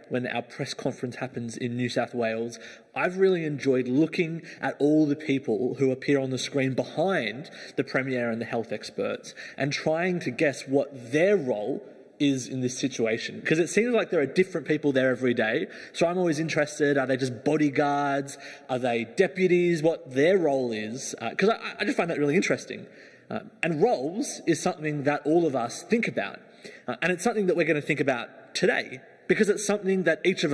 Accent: Australian